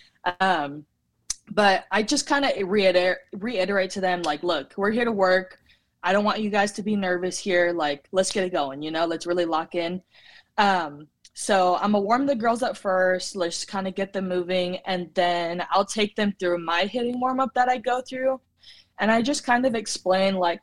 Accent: American